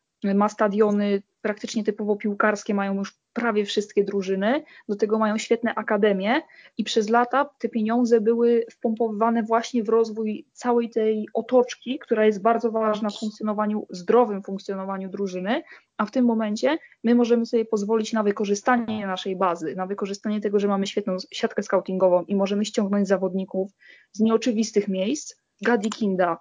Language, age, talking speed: Polish, 20-39, 150 wpm